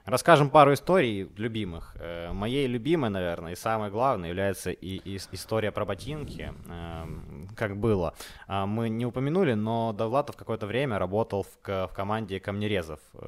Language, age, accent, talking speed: Ukrainian, 20-39, native, 125 wpm